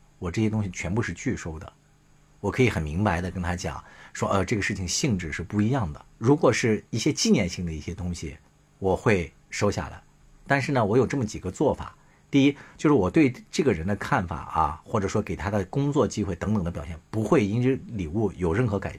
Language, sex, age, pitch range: Chinese, male, 50-69, 95-140 Hz